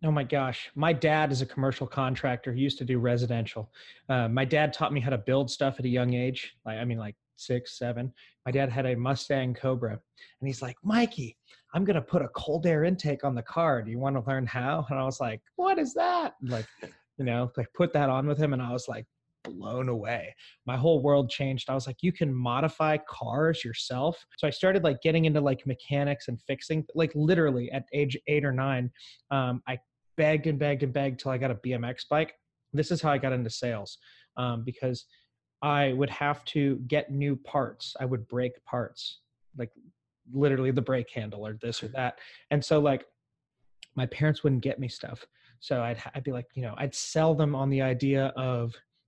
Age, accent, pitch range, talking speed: 30-49, American, 125-150 Hz, 215 wpm